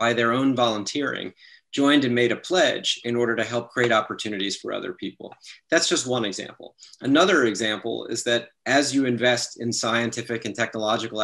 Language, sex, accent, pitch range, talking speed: English, male, American, 110-125 Hz, 175 wpm